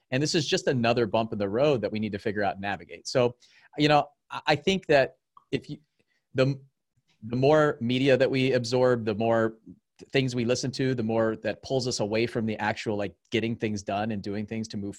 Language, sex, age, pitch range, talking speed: English, male, 30-49, 110-135 Hz, 225 wpm